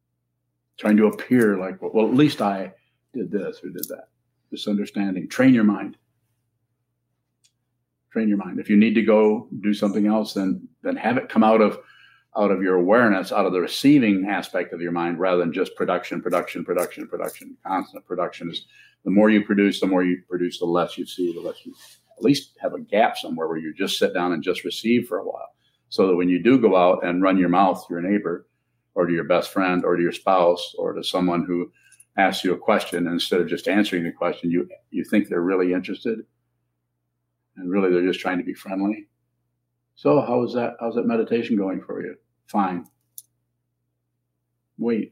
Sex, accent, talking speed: male, American, 205 wpm